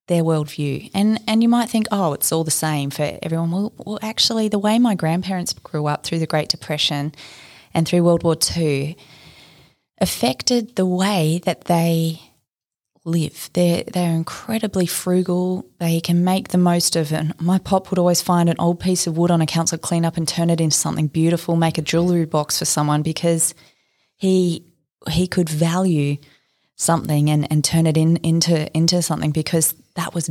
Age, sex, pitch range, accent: 20-39, female, 155-180 Hz, Australian